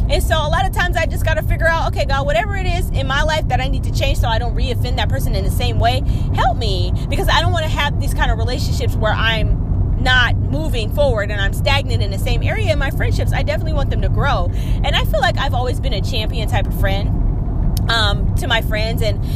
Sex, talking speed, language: female, 265 wpm, English